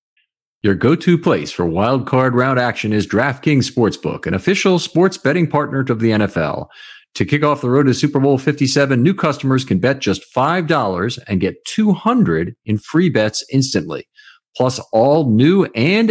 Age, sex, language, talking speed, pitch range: 50-69, male, English, 170 wpm, 105-150 Hz